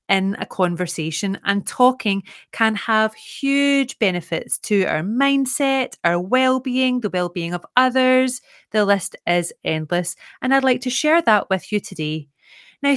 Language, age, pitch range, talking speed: English, 30-49, 180-245 Hz, 150 wpm